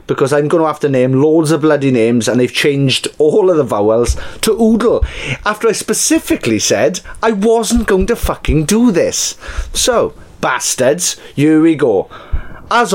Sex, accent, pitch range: male, British, 135-195 Hz